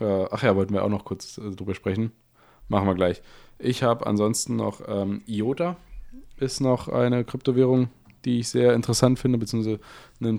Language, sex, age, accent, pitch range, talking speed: German, male, 20-39, German, 105-125 Hz, 165 wpm